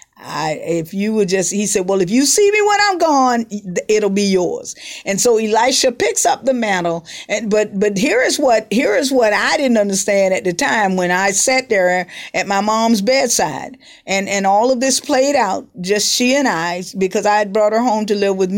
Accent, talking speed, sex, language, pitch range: American, 220 wpm, female, English, 200-260 Hz